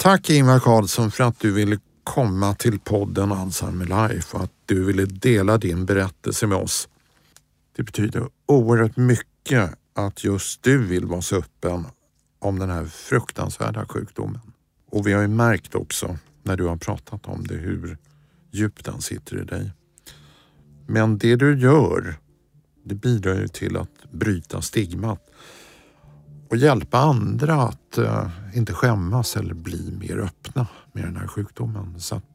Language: Swedish